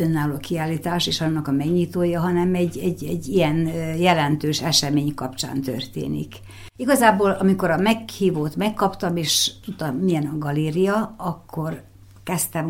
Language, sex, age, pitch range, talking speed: Hungarian, female, 60-79, 155-190 Hz, 130 wpm